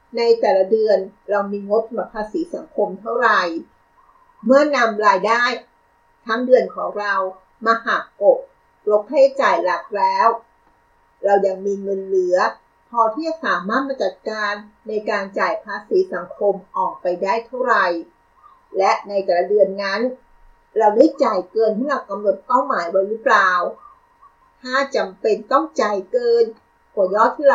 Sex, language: female, Thai